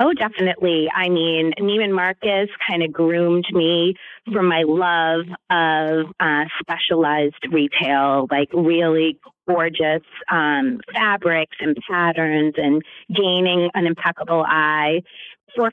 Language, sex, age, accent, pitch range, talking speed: English, female, 30-49, American, 165-200 Hz, 115 wpm